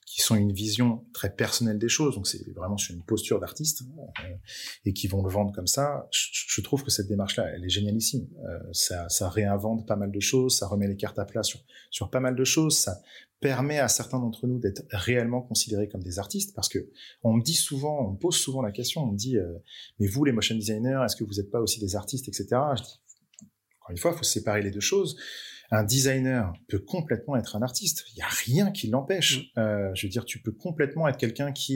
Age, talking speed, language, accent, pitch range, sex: 30-49, 235 wpm, French, French, 100-130 Hz, male